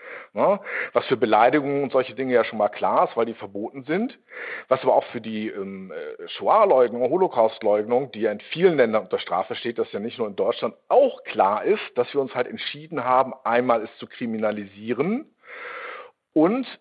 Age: 50-69